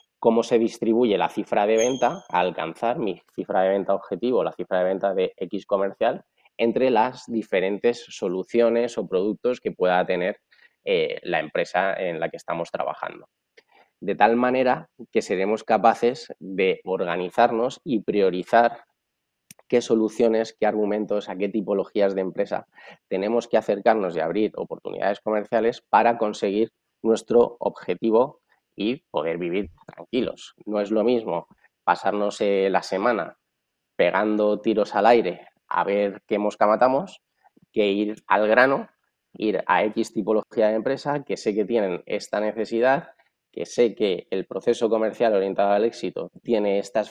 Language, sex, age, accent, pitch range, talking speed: Spanish, male, 20-39, Spanish, 100-120 Hz, 150 wpm